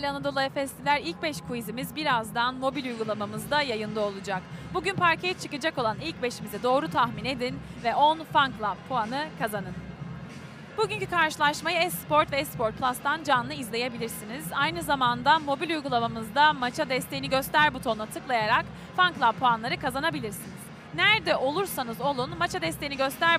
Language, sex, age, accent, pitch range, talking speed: Turkish, female, 30-49, native, 250-325 Hz, 135 wpm